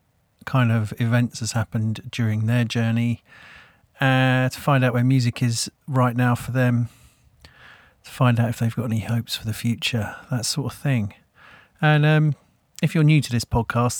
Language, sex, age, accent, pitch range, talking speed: English, male, 40-59, British, 115-140 Hz, 180 wpm